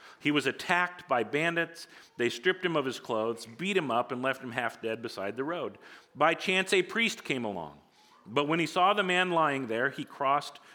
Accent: American